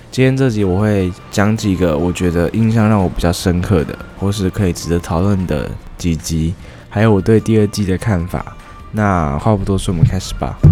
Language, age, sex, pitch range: Chinese, 20-39, male, 85-110 Hz